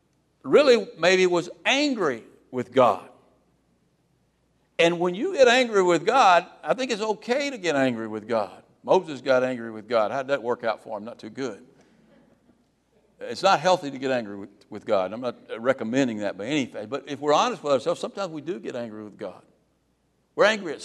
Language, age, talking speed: English, 60-79, 200 wpm